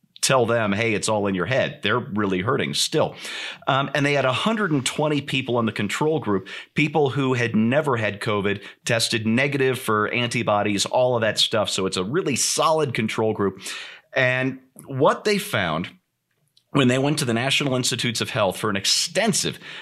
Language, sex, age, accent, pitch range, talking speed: English, male, 40-59, American, 115-150 Hz, 180 wpm